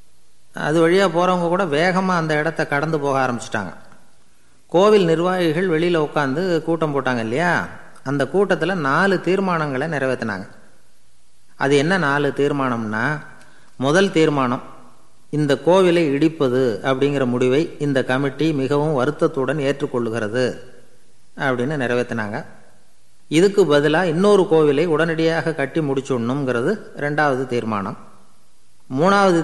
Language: Tamil